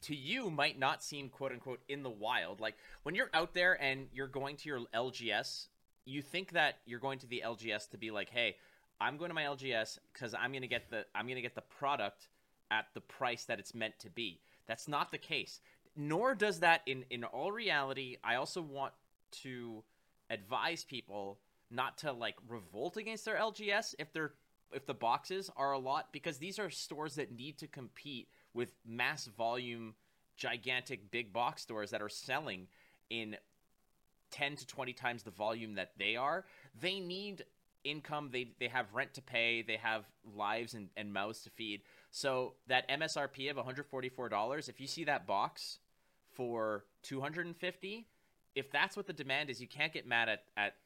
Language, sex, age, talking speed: English, male, 30-49, 190 wpm